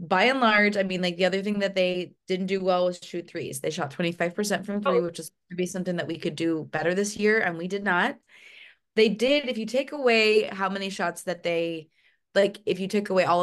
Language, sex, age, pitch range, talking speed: English, female, 20-39, 175-210 Hz, 245 wpm